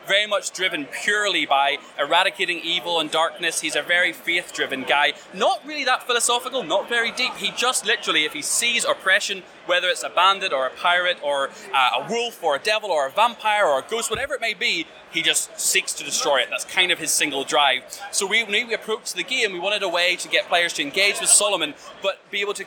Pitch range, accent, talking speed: 170-210 Hz, British, 220 wpm